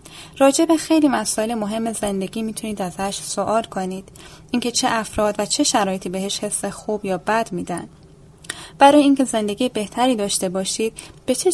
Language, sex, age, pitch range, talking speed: Persian, female, 10-29, 190-240 Hz, 150 wpm